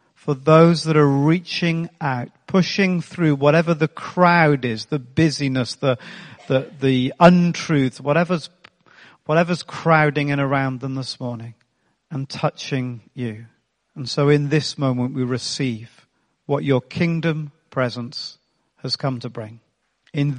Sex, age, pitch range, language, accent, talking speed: male, 40-59, 130-165 Hz, English, British, 130 wpm